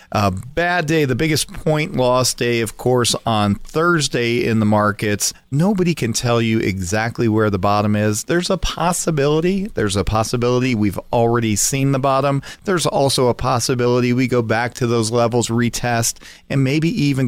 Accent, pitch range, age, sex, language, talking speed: American, 110-145 Hz, 40-59, male, English, 170 wpm